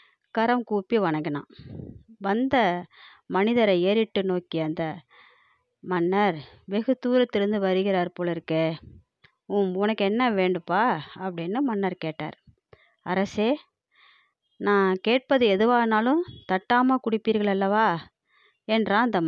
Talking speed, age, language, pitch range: 90 wpm, 20-39, Tamil, 180-250 Hz